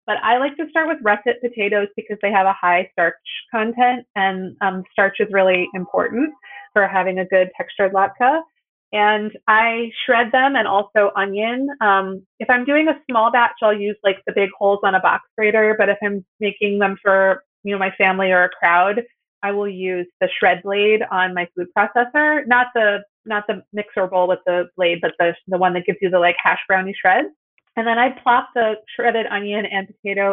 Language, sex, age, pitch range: English, female, 30-49, 185-230 Hz